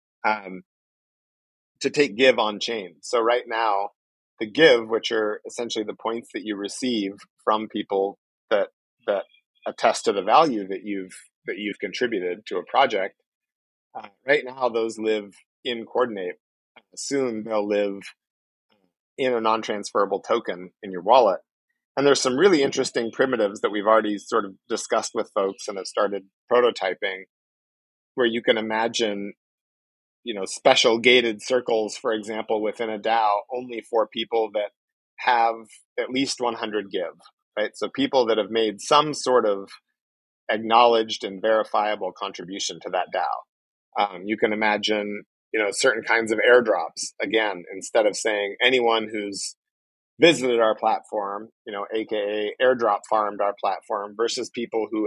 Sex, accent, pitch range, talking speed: male, American, 100-115 Hz, 150 wpm